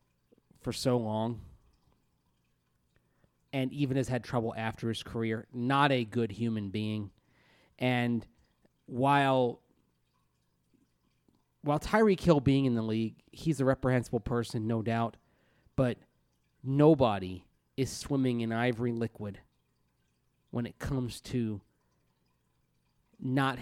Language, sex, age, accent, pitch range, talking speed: English, male, 30-49, American, 105-130 Hz, 110 wpm